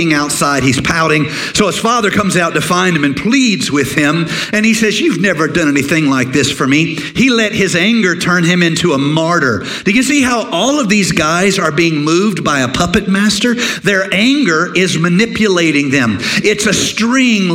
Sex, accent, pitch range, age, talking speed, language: male, American, 150-190 Hz, 50-69, 200 wpm, English